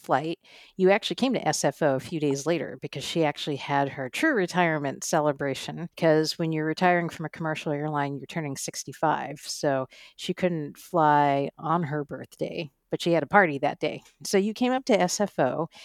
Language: English